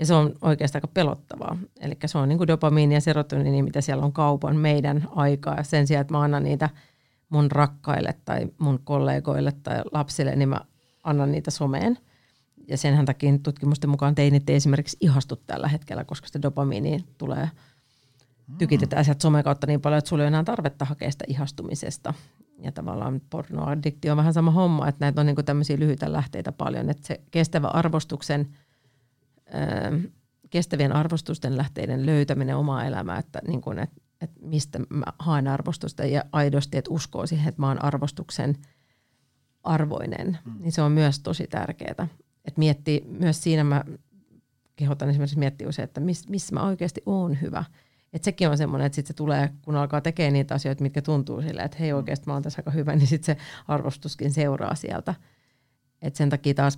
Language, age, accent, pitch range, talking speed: Finnish, 40-59, native, 140-155 Hz, 175 wpm